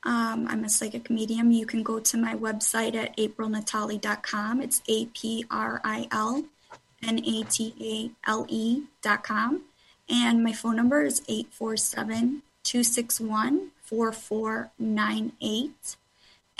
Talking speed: 75 wpm